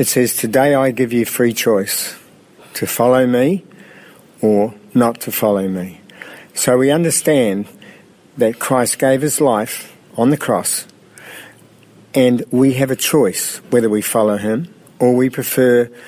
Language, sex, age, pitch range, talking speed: English, male, 50-69, 105-130 Hz, 145 wpm